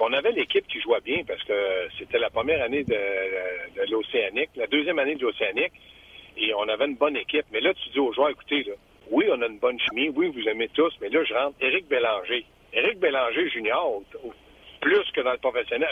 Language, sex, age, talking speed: French, male, 60-79, 220 wpm